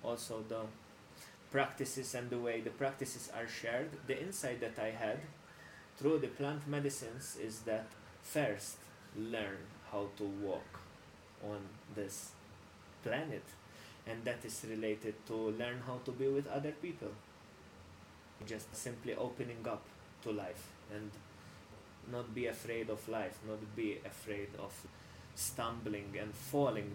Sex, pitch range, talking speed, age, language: male, 105-125 Hz, 135 wpm, 20-39, English